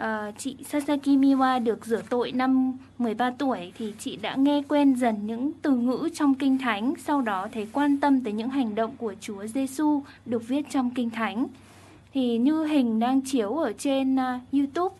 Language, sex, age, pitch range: Japanese, female, 10-29, 225-280 Hz